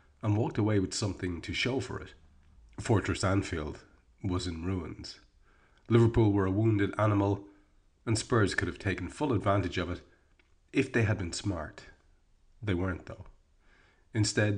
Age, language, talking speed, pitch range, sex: 30-49, English, 150 wpm, 90-105 Hz, male